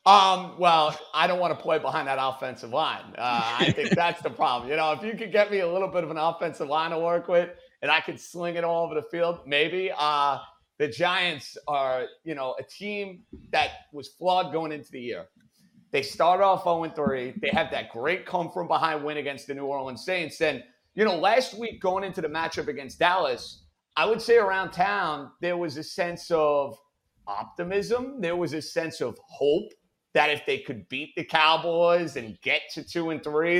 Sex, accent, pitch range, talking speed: male, American, 155-185 Hz, 205 wpm